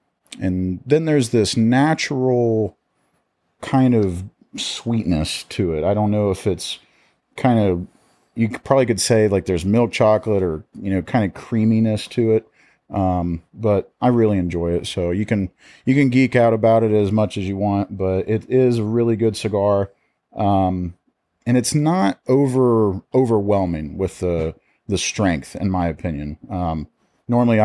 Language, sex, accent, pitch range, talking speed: English, male, American, 95-115 Hz, 165 wpm